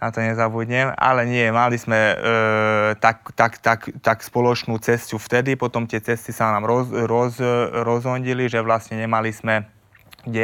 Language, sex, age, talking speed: Czech, male, 20-39, 165 wpm